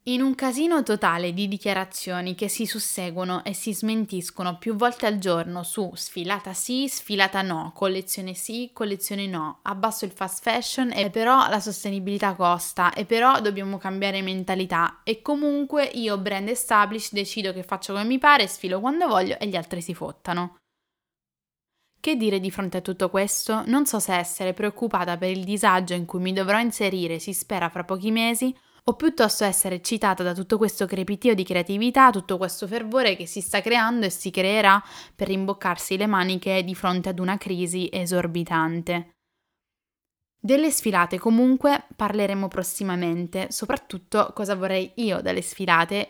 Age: 10-29